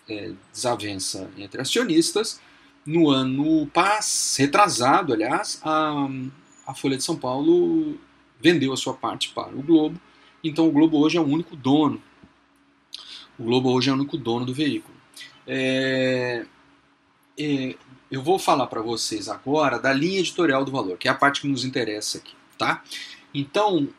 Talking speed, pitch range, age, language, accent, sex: 155 wpm, 140-175 Hz, 30-49, Portuguese, Brazilian, male